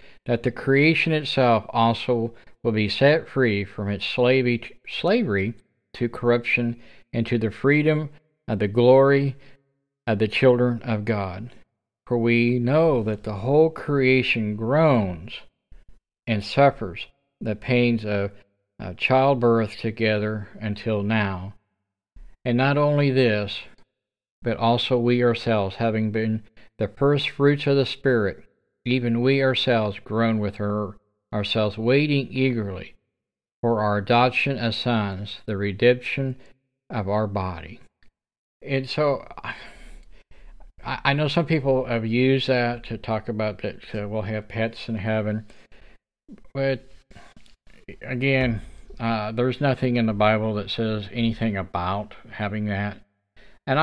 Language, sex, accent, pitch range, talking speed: English, male, American, 105-130 Hz, 125 wpm